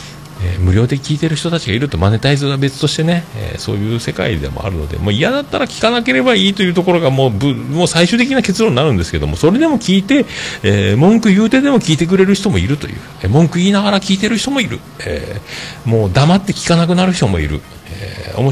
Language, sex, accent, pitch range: Japanese, male, native, 90-150 Hz